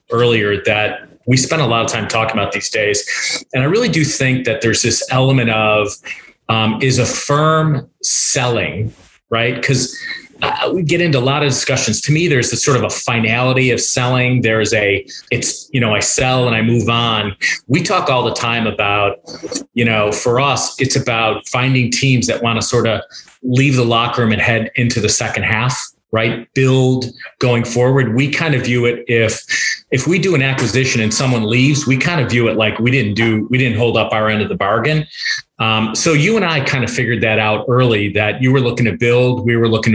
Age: 30-49